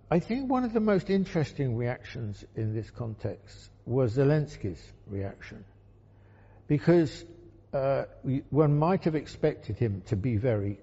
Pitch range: 100-140 Hz